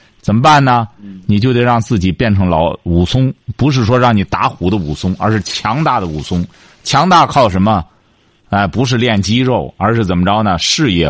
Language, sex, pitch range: Chinese, male, 100-140 Hz